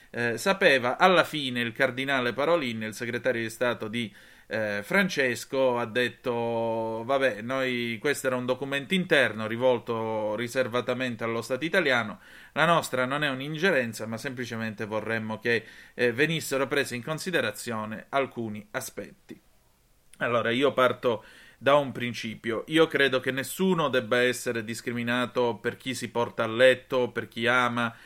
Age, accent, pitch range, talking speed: 30-49, native, 115-140 Hz, 140 wpm